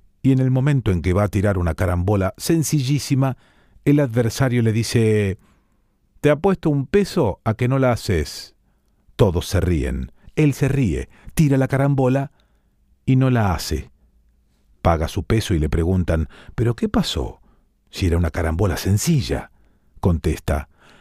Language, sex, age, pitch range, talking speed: Spanish, male, 40-59, 100-140 Hz, 155 wpm